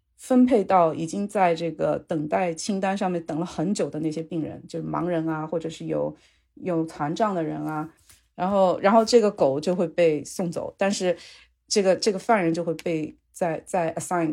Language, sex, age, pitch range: Chinese, female, 30-49, 160-210 Hz